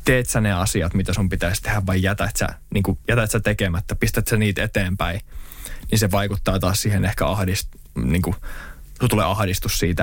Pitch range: 75-100 Hz